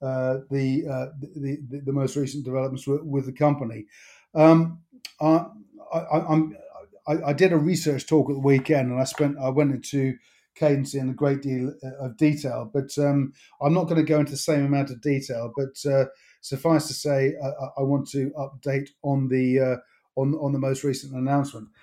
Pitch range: 135-150 Hz